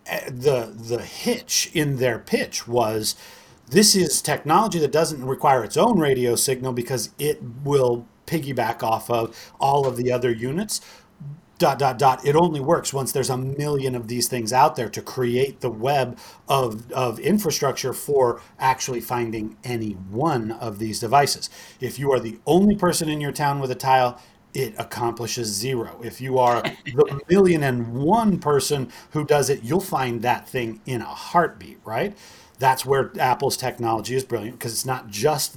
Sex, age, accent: male, 40-59, American